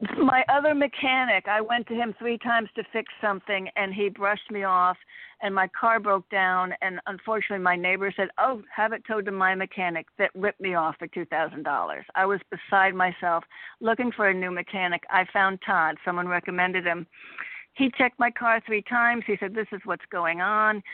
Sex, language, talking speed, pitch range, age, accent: female, English, 195 wpm, 185-220 Hz, 60-79, American